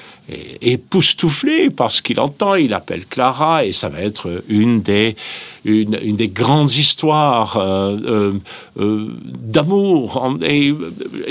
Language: French